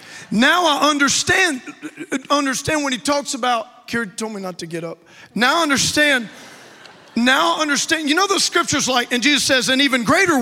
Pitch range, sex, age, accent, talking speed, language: 255-330 Hz, male, 40-59, American, 185 wpm, English